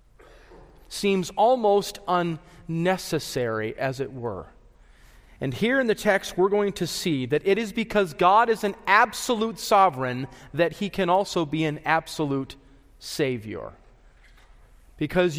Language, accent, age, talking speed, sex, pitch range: English, American, 40-59, 130 wpm, male, 150-200 Hz